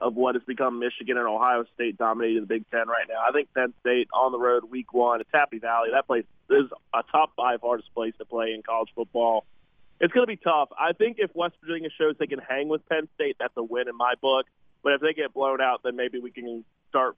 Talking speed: 255 wpm